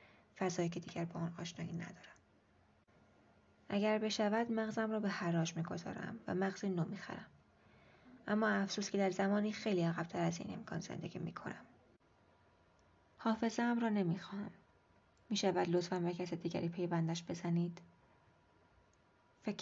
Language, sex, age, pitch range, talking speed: Persian, female, 20-39, 170-200 Hz, 130 wpm